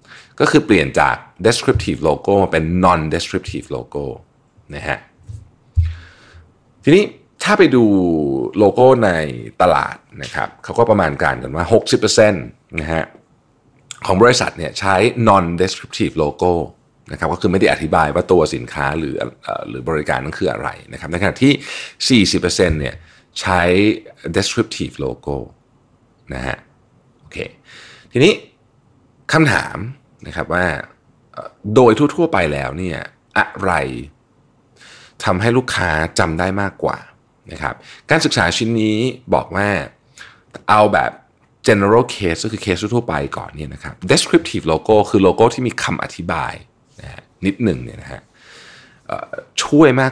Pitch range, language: 85-115 Hz, Thai